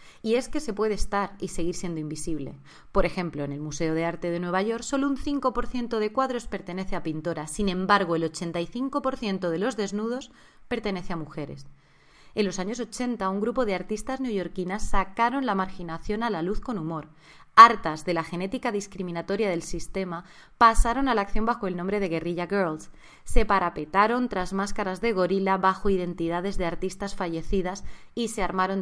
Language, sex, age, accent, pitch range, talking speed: Spanish, female, 20-39, Spanish, 170-215 Hz, 180 wpm